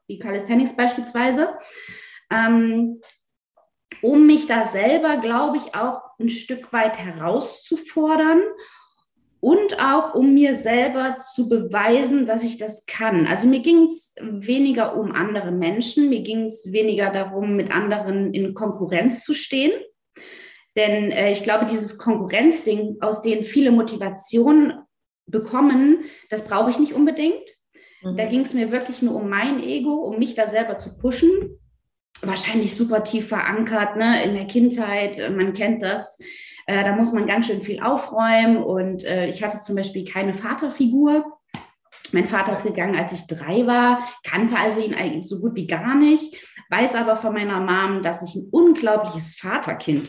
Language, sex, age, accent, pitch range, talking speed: German, female, 20-39, German, 200-260 Hz, 155 wpm